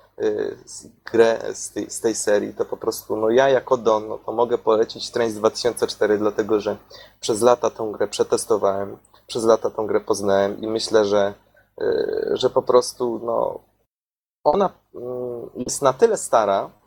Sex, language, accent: male, Polish, native